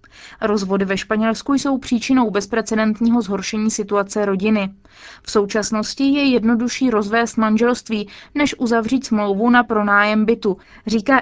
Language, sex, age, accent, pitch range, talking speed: Czech, female, 20-39, native, 205-240 Hz, 120 wpm